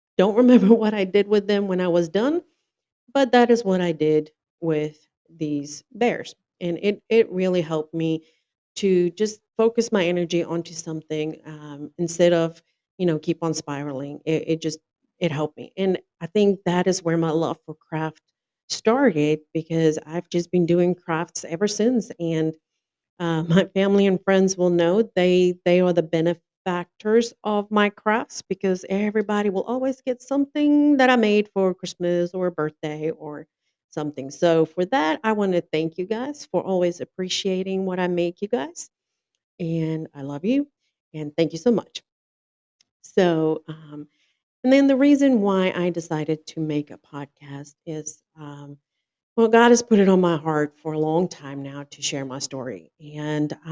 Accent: American